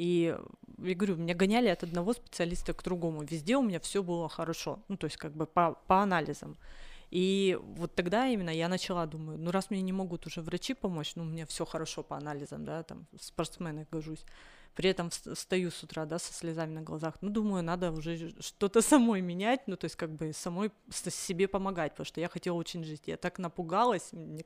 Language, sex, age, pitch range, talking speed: Russian, female, 20-39, 165-200 Hz, 210 wpm